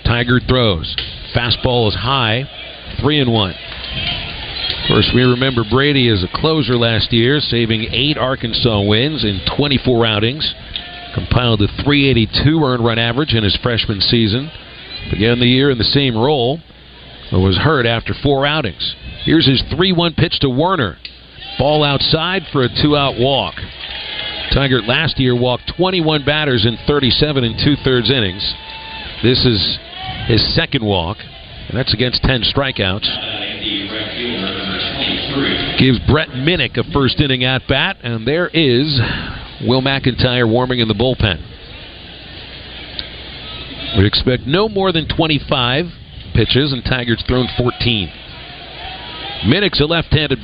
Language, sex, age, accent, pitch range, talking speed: English, male, 50-69, American, 110-140 Hz, 130 wpm